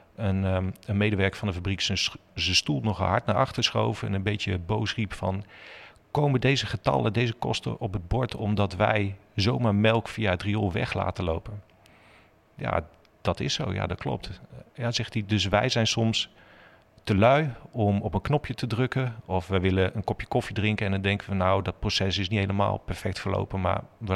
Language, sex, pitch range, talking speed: Dutch, male, 95-110 Hz, 200 wpm